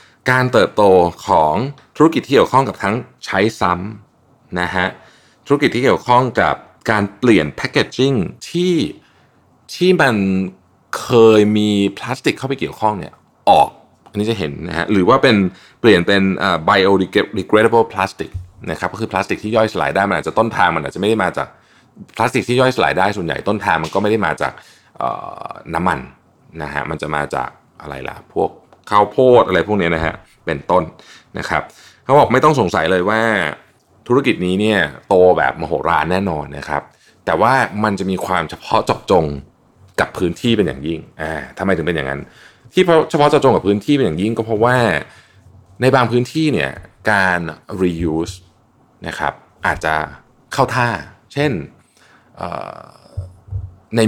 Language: Thai